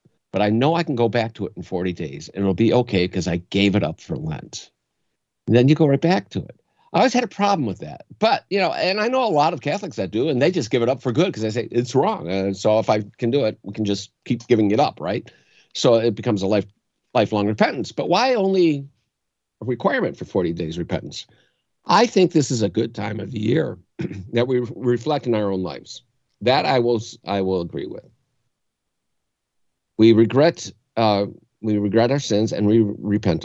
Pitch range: 95-125 Hz